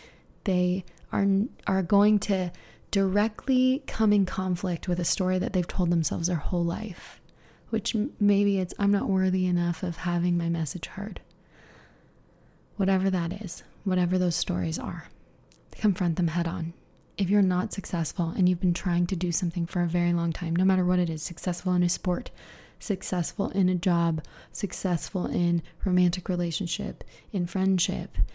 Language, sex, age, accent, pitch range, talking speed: English, female, 20-39, American, 175-195 Hz, 165 wpm